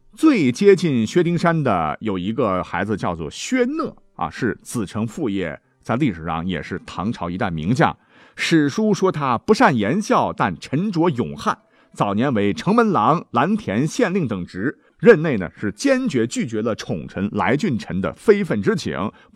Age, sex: 50-69, male